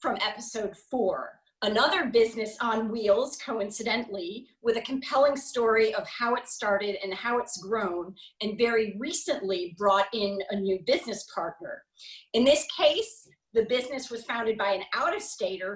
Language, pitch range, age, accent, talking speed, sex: English, 205-265 Hz, 30-49, American, 150 wpm, female